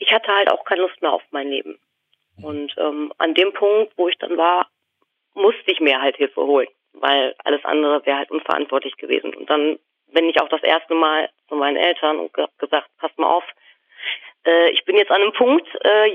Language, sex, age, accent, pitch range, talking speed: German, female, 30-49, German, 175-235 Hz, 210 wpm